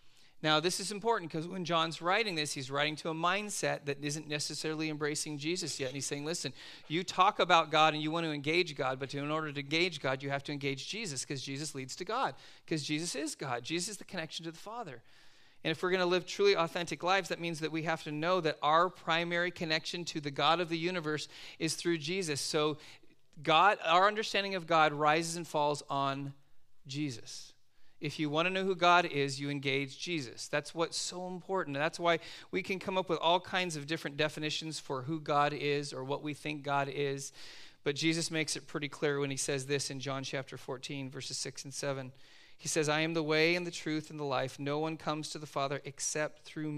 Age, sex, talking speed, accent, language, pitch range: 40-59, male, 225 wpm, American, English, 140-165 Hz